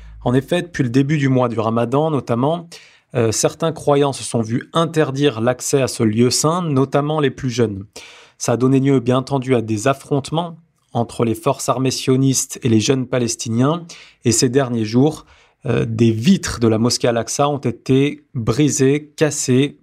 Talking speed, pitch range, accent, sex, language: 180 wpm, 120-150 Hz, French, male, French